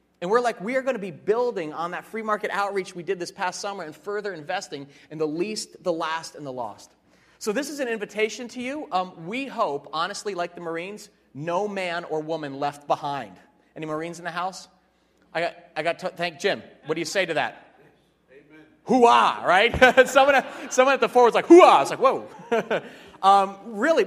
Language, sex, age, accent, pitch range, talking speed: English, male, 30-49, American, 165-215 Hz, 205 wpm